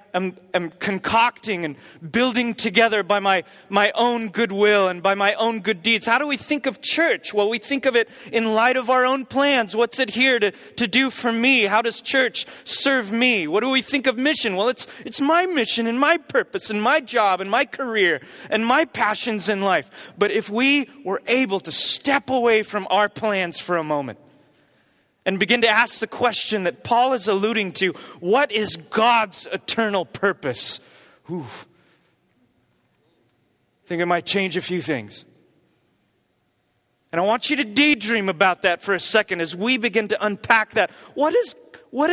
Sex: male